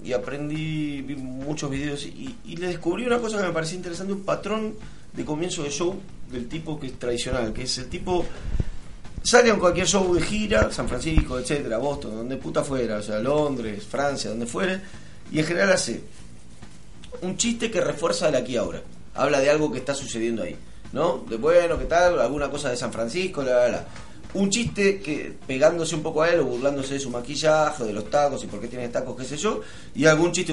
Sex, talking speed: male, 210 wpm